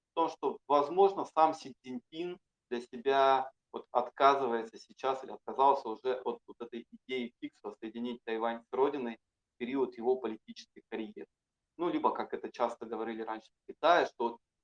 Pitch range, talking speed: 115-140 Hz, 155 wpm